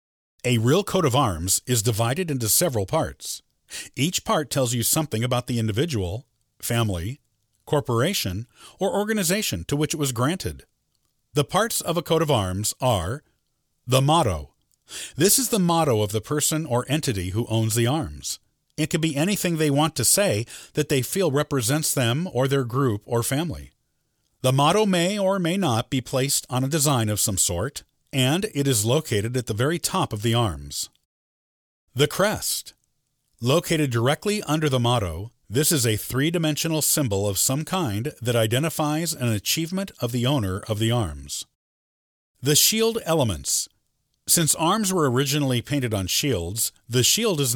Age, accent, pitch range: 50-69, American, 110-155 Hz